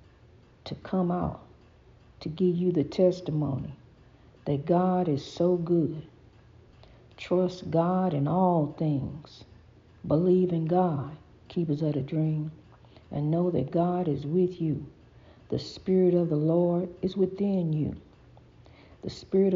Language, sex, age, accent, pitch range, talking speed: English, female, 50-69, American, 140-180 Hz, 130 wpm